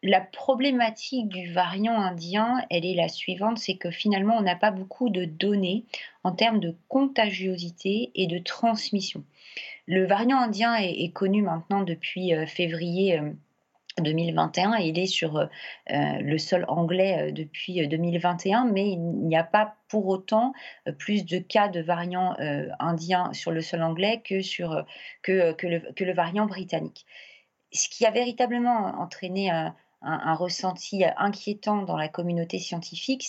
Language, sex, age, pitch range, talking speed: French, female, 30-49, 170-215 Hz, 150 wpm